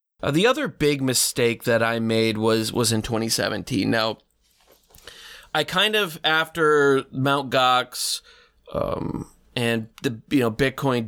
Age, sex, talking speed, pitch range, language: 30-49, male, 135 wpm, 115-140 Hz, English